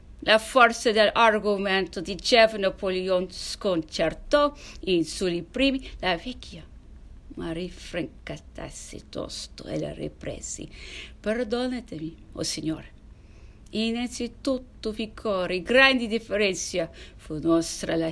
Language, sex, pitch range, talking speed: English, female, 180-255 Hz, 100 wpm